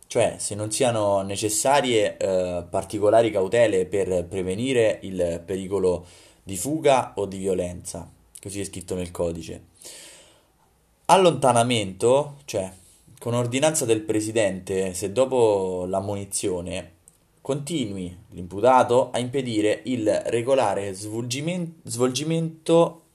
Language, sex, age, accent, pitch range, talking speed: Italian, male, 20-39, native, 90-120 Hz, 100 wpm